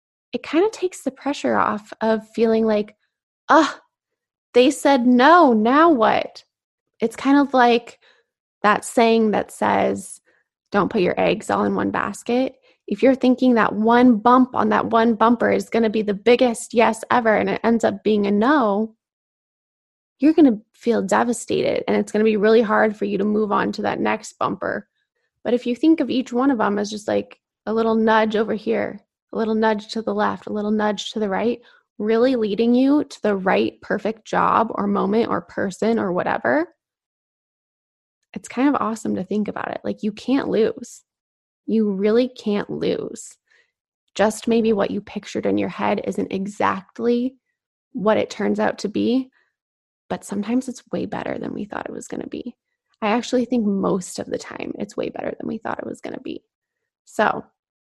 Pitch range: 215-255 Hz